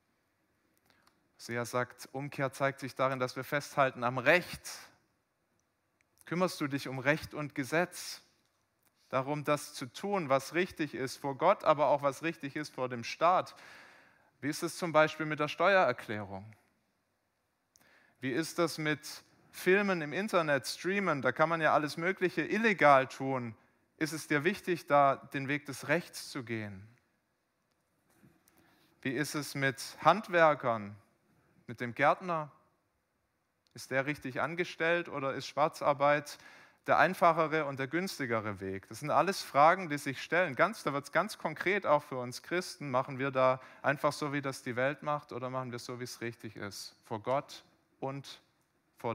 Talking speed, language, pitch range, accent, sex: 155 wpm, German, 125-160 Hz, German, male